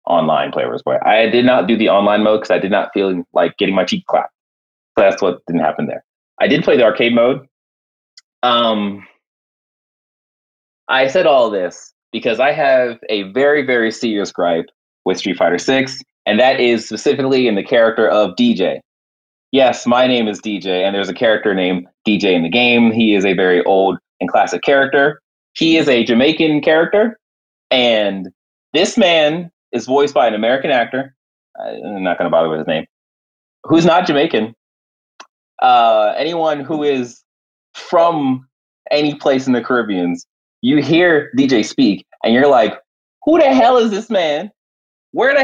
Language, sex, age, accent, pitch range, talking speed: English, male, 20-39, American, 105-170 Hz, 175 wpm